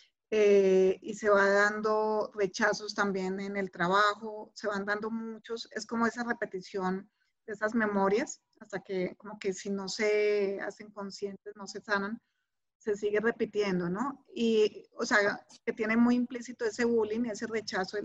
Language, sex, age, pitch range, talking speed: Spanish, female, 30-49, 200-230 Hz, 160 wpm